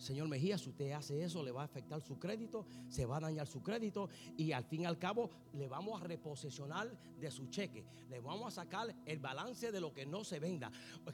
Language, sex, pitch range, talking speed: English, male, 175-275 Hz, 235 wpm